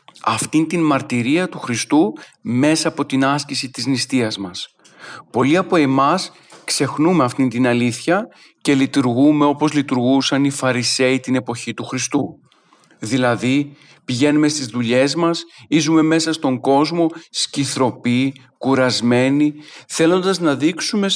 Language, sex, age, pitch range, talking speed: Greek, male, 40-59, 120-150 Hz, 120 wpm